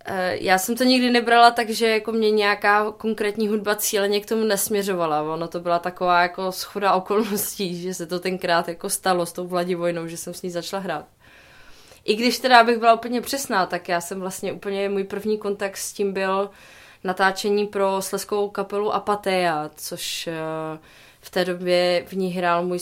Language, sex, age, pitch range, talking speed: Czech, female, 20-39, 170-200 Hz, 180 wpm